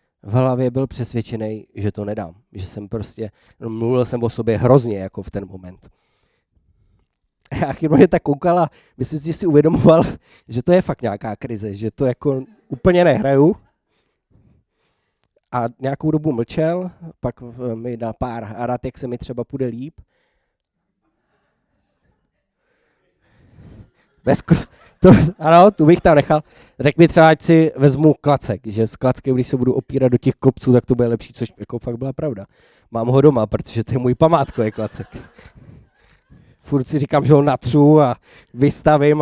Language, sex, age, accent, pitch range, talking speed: Czech, male, 20-39, native, 115-150 Hz, 160 wpm